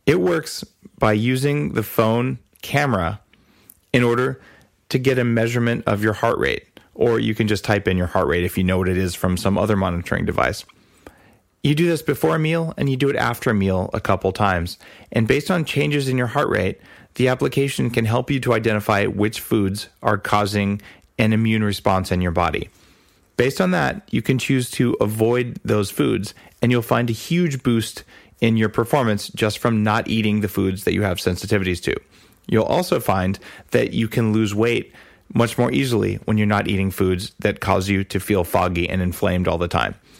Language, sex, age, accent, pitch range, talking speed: English, male, 30-49, American, 95-120 Hz, 200 wpm